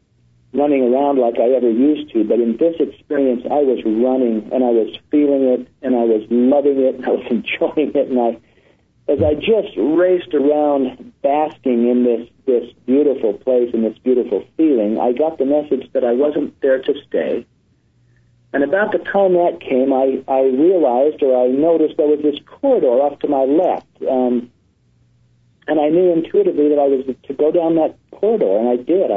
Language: English